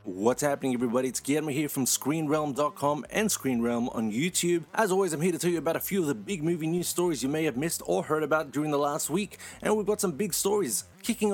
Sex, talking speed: male, 245 wpm